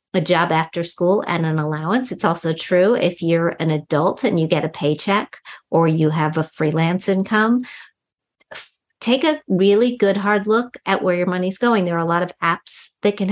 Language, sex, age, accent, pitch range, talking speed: English, female, 50-69, American, 170-210 Hz, 200 wpm